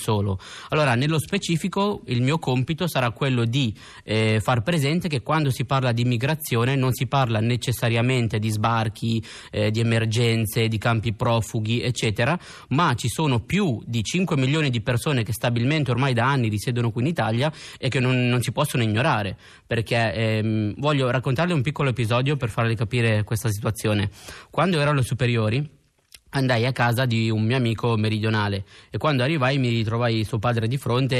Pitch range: 110-140 Hz